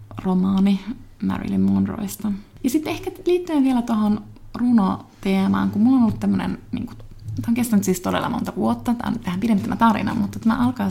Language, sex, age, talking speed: Finnish, female, 30-49, 165 wpm